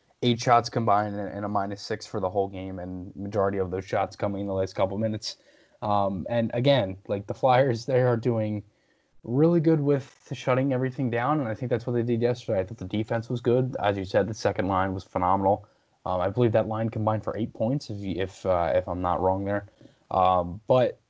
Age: 20-39